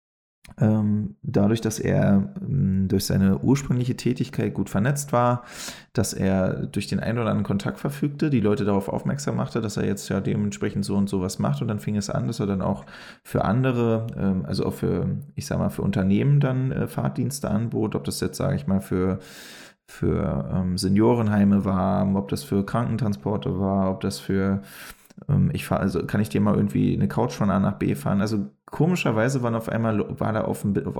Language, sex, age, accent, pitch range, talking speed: German, male, 20-39, German, 100-120 Hz, 190 wpm